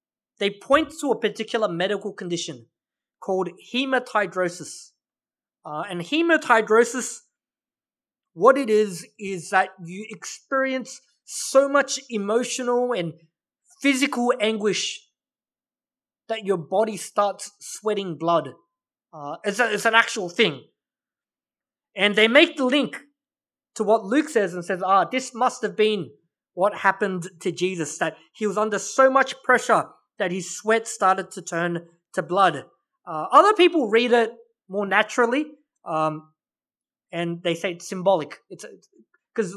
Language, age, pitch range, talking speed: English, 20-39, 185-260 Hz, 130 wpm